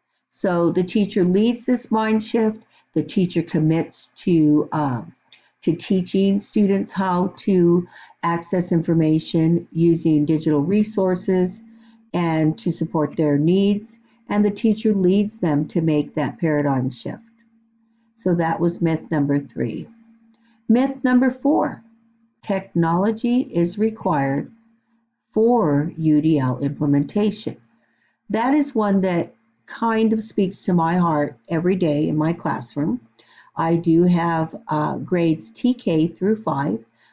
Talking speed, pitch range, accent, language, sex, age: 120 wpm, 155-215 Hz, American, English, female, 50-69